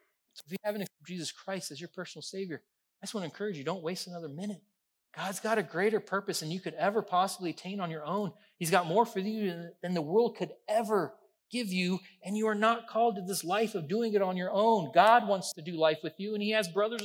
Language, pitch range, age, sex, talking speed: English, 150-205 Hz, 30-49, male, 255 wpm